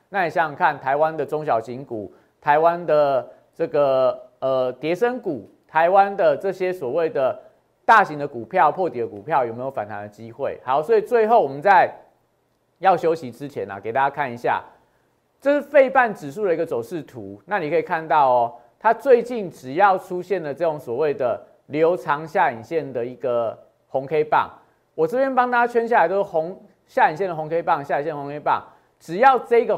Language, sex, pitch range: Chinese, male, 145-240 Hz